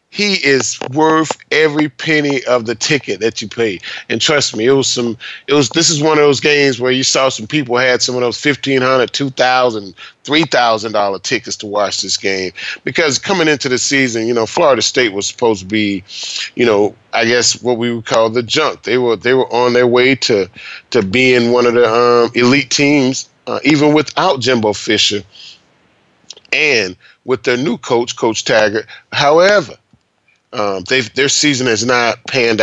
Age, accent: 30-49, American